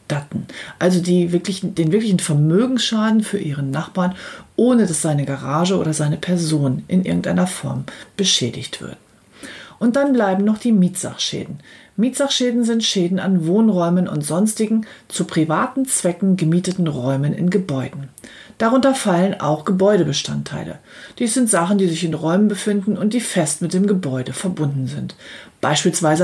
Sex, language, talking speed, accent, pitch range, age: female, German, 140 wpm, German, 155-210 Hz, 40-59